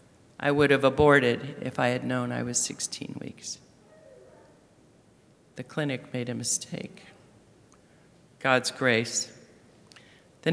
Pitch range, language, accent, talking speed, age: 130-150 Hz, English, American, 115 wpm, 50-69